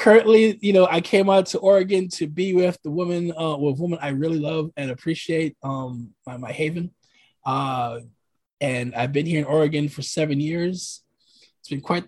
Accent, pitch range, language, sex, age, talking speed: American, 140-175 Hz, English, male, 20-39, 195 wpm